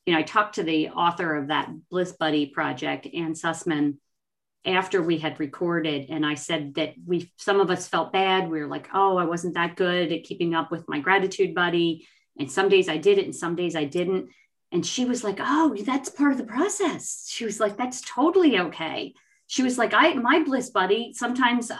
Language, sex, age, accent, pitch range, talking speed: English, female, 40-59, American, 170-240 Hz, 215 wpm